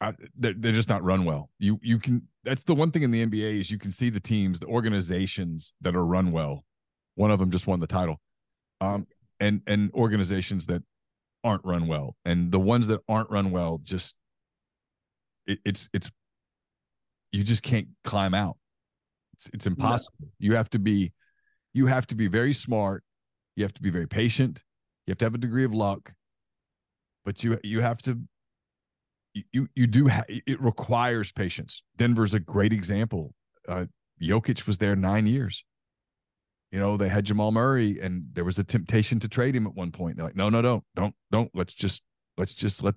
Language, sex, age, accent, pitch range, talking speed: English, male, 30-49, American, 95-115 Hz, 195 wpm